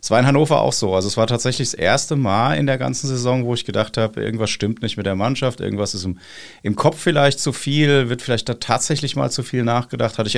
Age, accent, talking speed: 30-49, German, 260 wpm